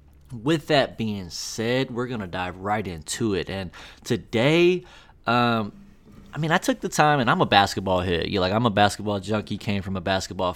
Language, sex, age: English, male, 20-39